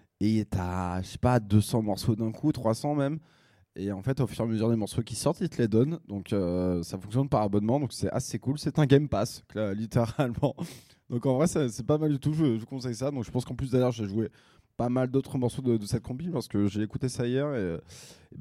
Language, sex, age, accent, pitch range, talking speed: French, male, 20-39, French, 100-135 Hz, 255 wpm